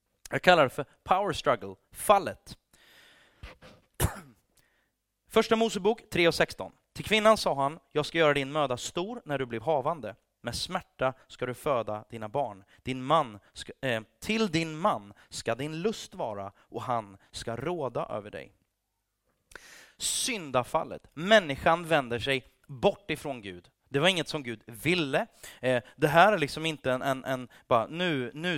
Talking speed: 155 wpm